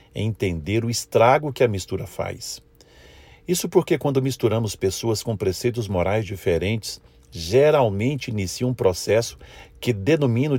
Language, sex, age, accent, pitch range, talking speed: Portuguese, male, 50-69, Brazilian, 100-135 Hz, 130 wpm